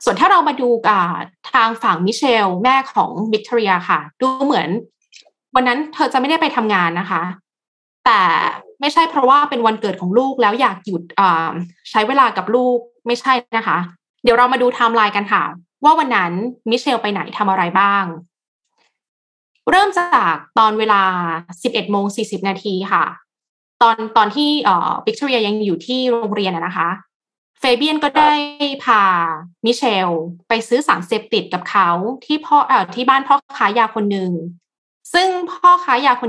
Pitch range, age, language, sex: 195-265 Hz, 20-39, Thai, female